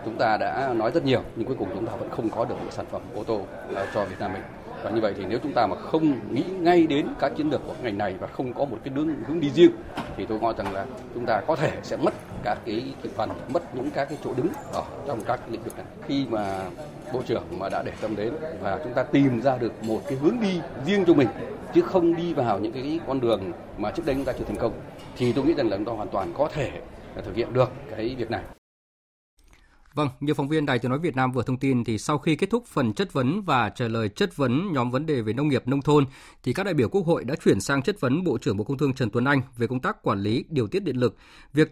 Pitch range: 120-155 Hz